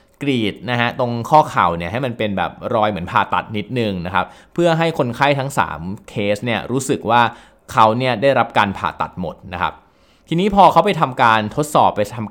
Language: Thai